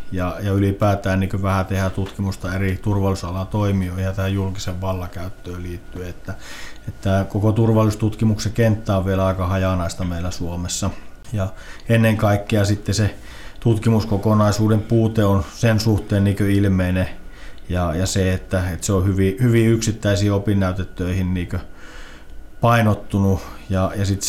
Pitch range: 90-105 Hz